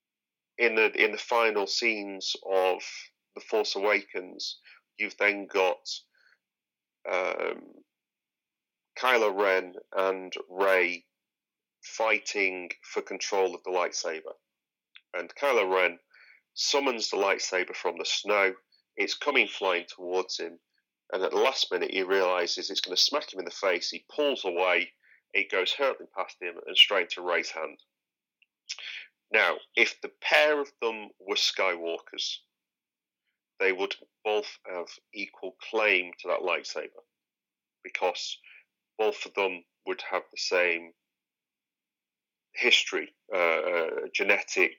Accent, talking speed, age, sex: British, 125 wpm, 30-49, male